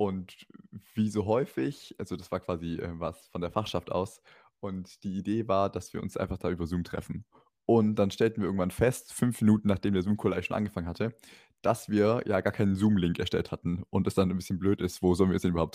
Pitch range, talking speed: 90-110 Hz, 235 wpm